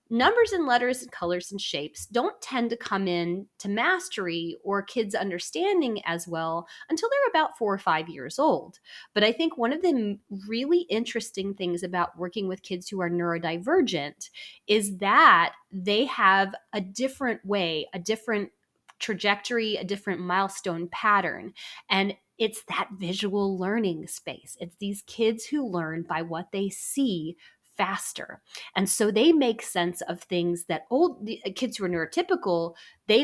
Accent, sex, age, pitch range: American, female, 20-39, 175-235 Hz